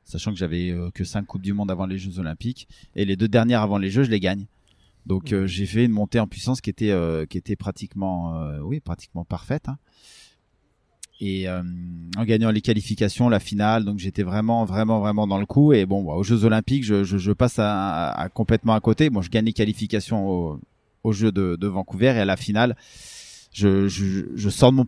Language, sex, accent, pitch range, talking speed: French, male, French, 95-110 Hz, 230 wpm